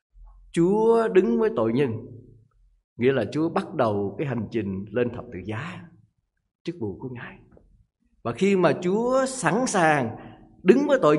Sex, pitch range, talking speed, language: male, 120-195 Hz, 160 wpm, Vietnamese